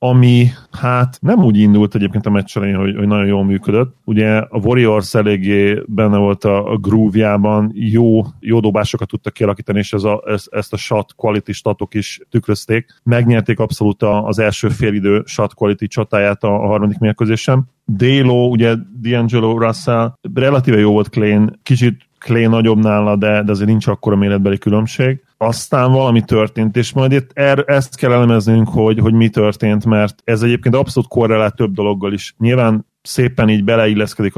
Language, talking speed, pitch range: Hungarian, 160 wpm, 105-120 Hz